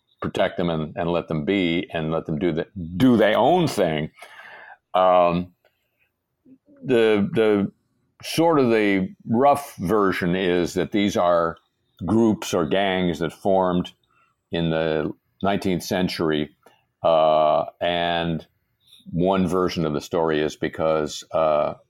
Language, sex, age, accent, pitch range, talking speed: English, male, 50-69, American, 80-100 Hz, 130 wpm